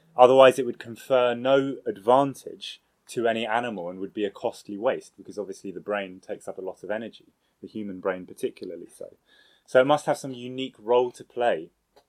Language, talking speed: English, 195 wpm